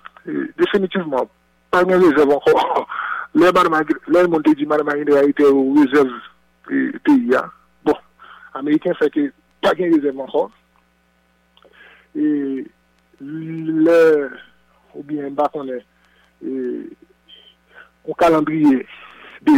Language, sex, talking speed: English, male, 100 wpm